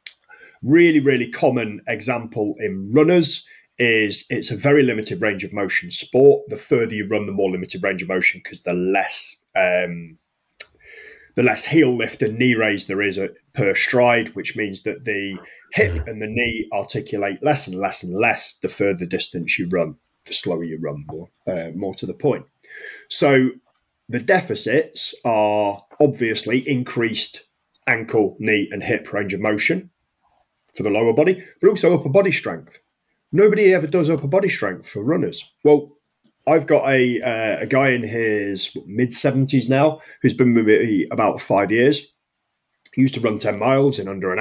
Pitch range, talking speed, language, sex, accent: 105-145 Hz, 170 wpm, English, male, British